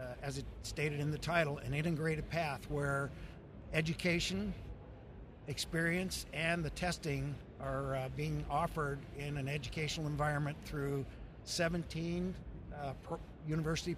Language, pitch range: English, 135-160 Hz